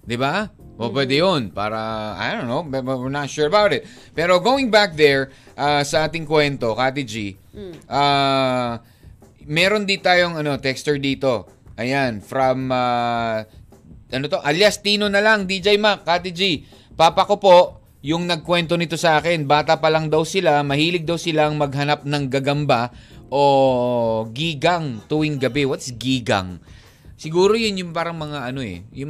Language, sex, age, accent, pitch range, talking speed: Filipino, male, 20-39, native, 130-175 Hz, 155 wpm